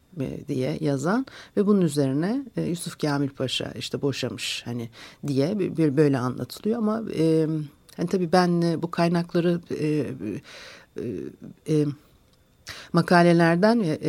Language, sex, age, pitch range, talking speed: Turkish, female, 60-79, 140-205 Hz, 95 wpm